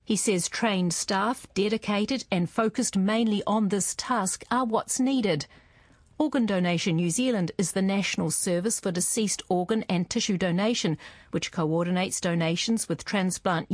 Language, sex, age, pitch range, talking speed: English, female, 50-69, 170-225 Hz, 145 wpm